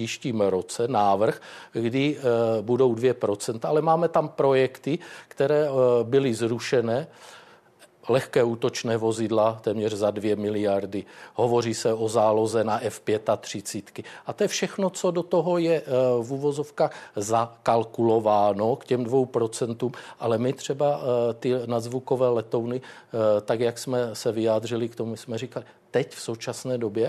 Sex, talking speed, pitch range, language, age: male, 145 wpm, 115-140 Hz, Czech, 50-69